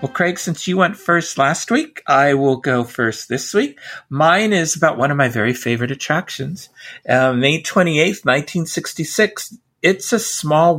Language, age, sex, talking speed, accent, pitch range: English, 50-69, male, 165 wpm, American, 125-175 Hz